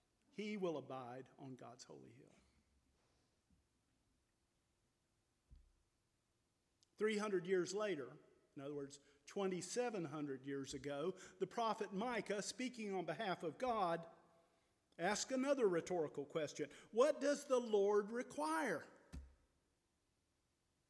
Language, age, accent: English, 50-69, American